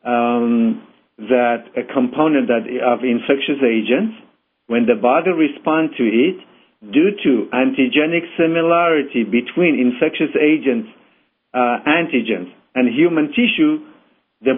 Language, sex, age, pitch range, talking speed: English, male, 50-69, 125-170 Hz, 110 wpm